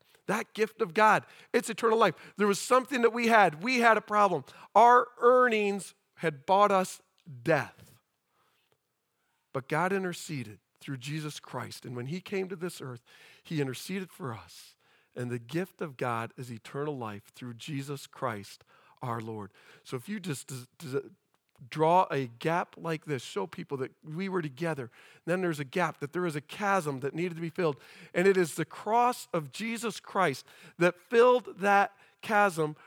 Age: 40-59